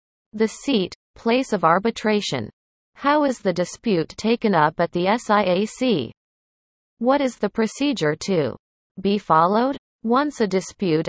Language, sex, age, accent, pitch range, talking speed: English, female, 30-49, American, 170-225 Hz, 130 wpm